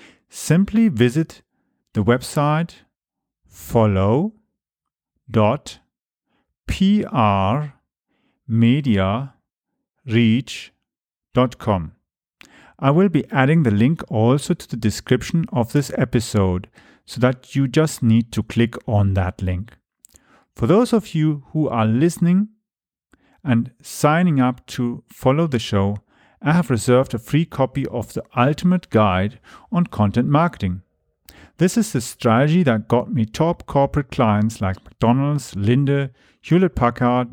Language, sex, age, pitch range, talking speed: English, male, 40-59, 110-150 Hz, 110 wpm